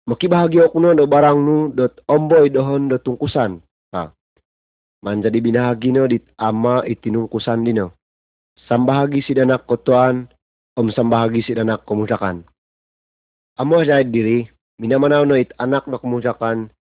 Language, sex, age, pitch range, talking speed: Malay, male, 30-49, 110-140 Hz, 130 wpm